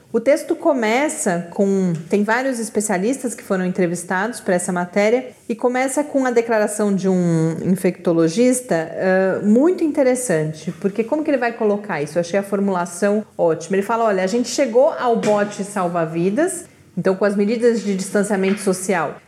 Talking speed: 160 wpm